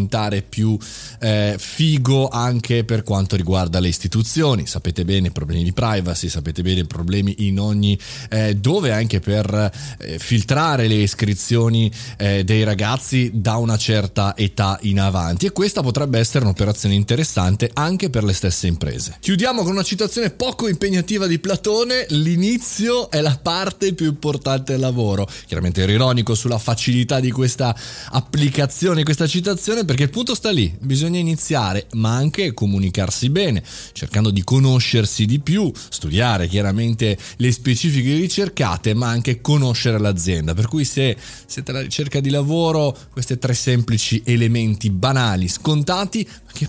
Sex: male